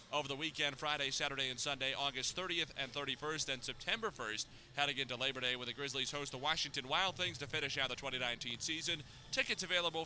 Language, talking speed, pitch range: English, 205 wpm, 125-150 Hz